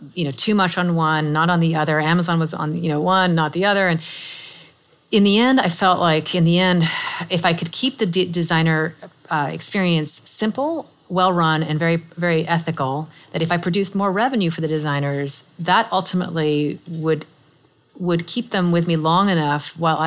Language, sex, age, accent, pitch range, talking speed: English, female, 30-49, American, 155-180 Hz, 190 wpm